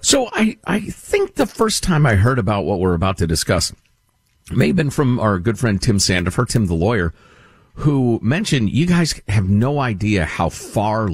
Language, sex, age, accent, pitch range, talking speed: English, male, 50-69, American, 85-130 Hz, 195 wpm